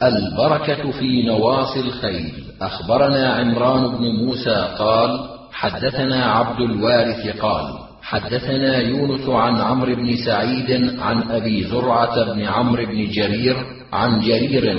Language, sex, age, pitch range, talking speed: Arabic, male, 40-59, 115-130 Hz, 115 wpm